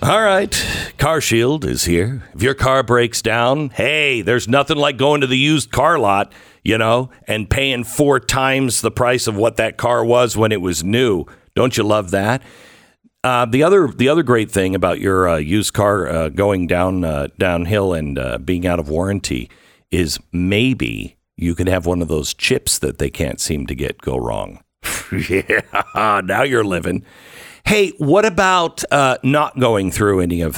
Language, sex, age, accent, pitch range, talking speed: English, male, 50-69, American, 95-135 Hz, 185 wpm